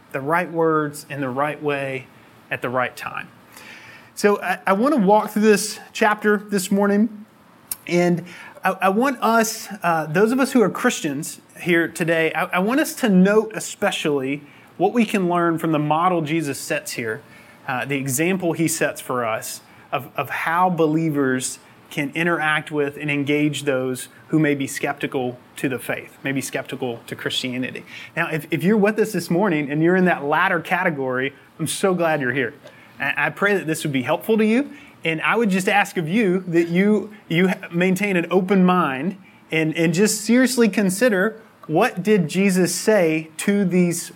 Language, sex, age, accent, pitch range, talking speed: English, male, 30-49, American, 150-200 Hz, 180 wpm